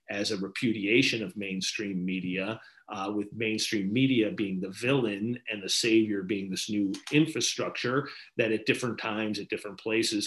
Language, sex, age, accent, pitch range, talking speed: English, male, 40-59, American, 105-120 Hz, 160 wpm